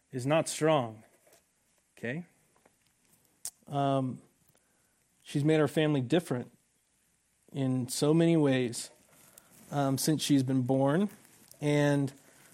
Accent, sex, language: American, male, English